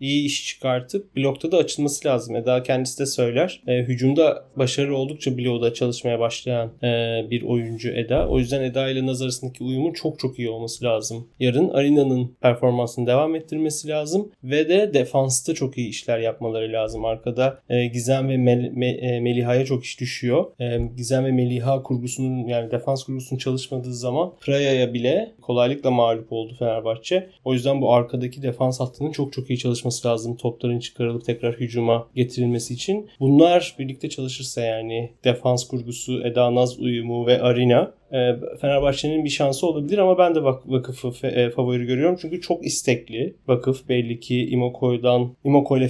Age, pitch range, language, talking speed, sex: 30-49, 120-140 Hz, Turkish, 160 wpm, male